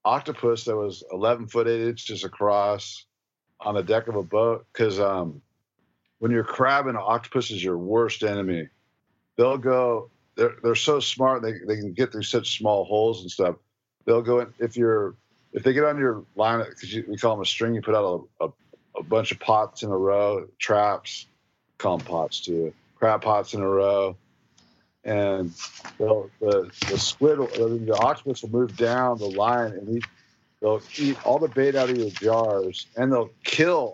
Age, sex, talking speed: 50-69, male, 190 wpm